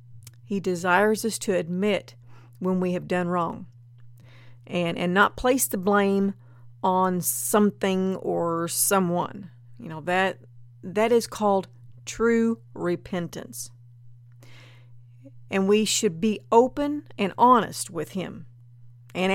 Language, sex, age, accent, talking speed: English, female, 50-69, American, 120 wpm